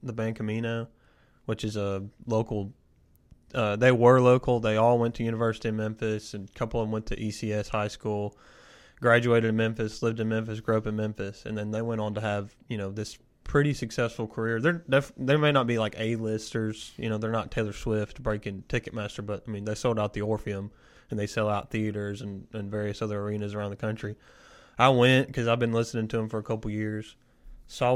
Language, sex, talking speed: English, male, 220 wpm